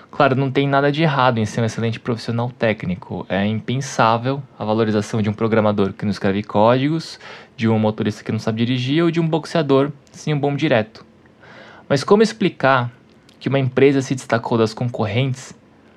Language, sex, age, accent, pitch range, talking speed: Portuguese, male, 20-39, Brazilian, 115-145 Hz, 180 wpm